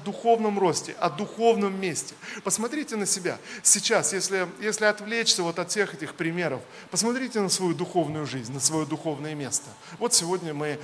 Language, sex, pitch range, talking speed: Russian, male, 145-195 Hz, 160 wpm